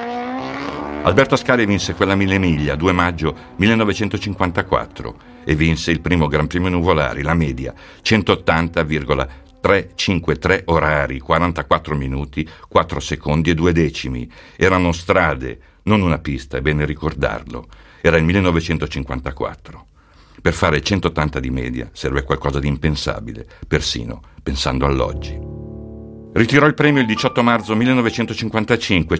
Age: 60-79